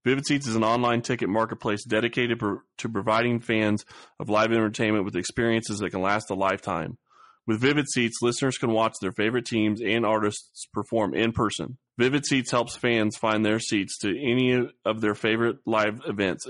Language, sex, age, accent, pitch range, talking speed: English, male, 30-49, American, 105-125 Hz, 180 wpm